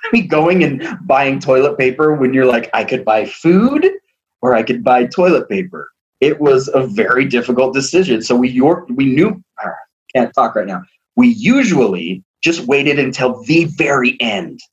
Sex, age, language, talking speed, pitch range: male, 30-49, English, 170 wpm, 125-190 Hz